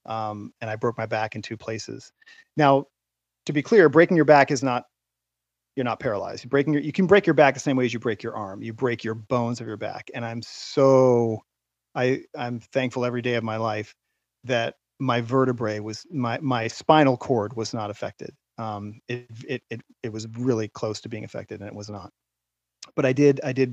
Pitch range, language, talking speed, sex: 110-145 Hz, English, 215 wpm, male